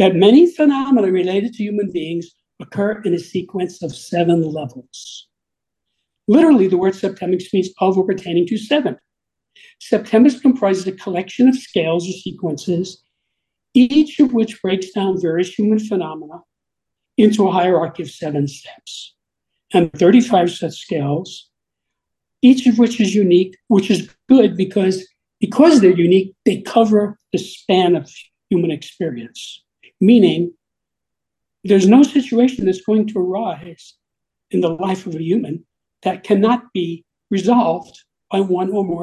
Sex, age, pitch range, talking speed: male, 60-79, 175-225 Hz, 140 wpm